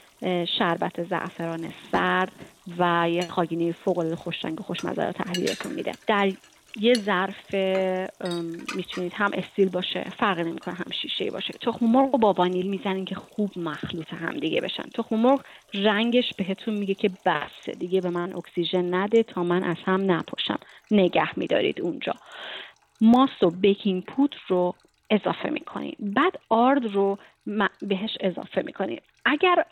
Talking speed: 140 wpm